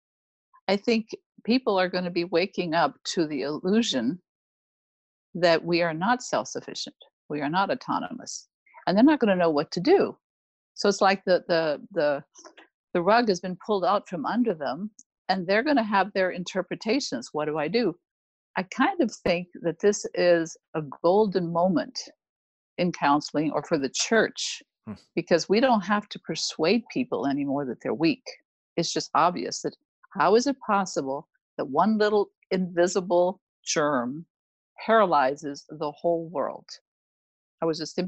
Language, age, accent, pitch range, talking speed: English, 50-69, American, 155-210 Hz, 165 wpm